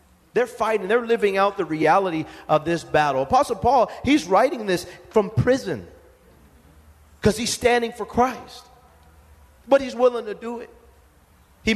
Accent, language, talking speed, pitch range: American, English, 150 wpm, 180-240 Hz